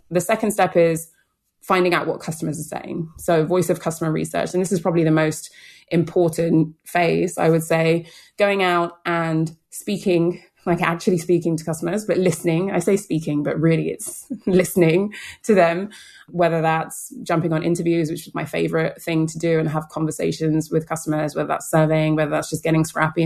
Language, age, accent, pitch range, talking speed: English, 20-39, British, 160-180 Hz, 185 wpm